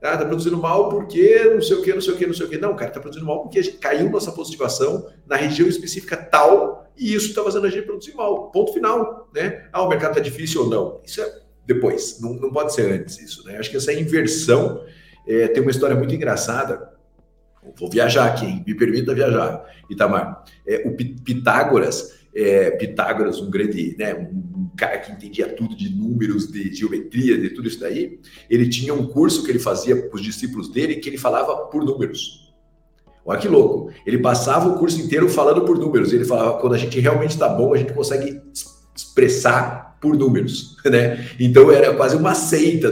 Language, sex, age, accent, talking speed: Portuguese, male, 50-69, Brazilian, 200 wpm